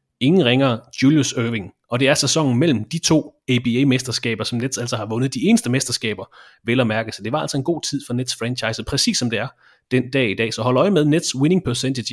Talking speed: 240 wpm